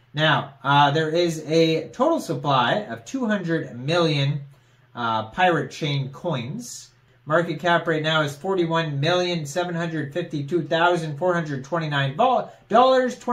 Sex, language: male, English